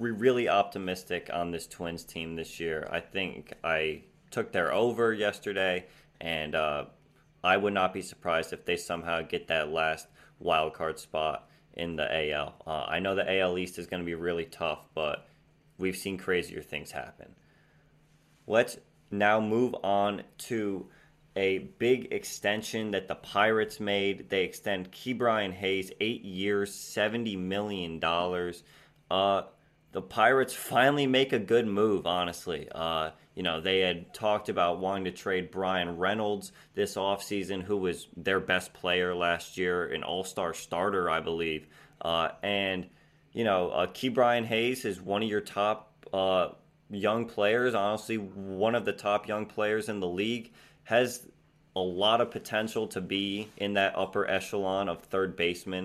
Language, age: English, 20-39